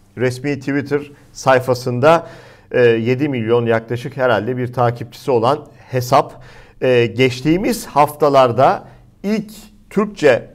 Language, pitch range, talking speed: Turkish, 125-180 Hz, 85 wpm